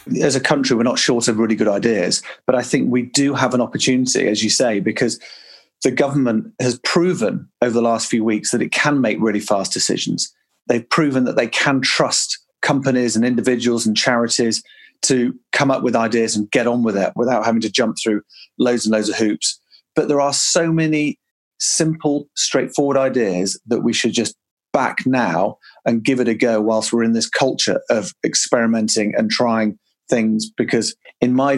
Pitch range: 115-140 Hz